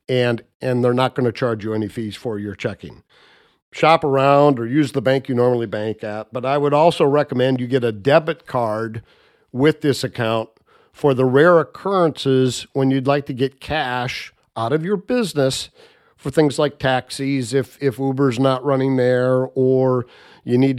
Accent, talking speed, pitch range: American, 180 wpm, 120-140 Hz